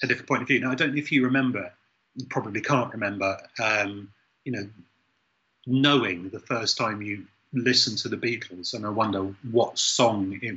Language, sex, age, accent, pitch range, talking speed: English, male, 30-49, British, 105-130 Hz, 195 wpm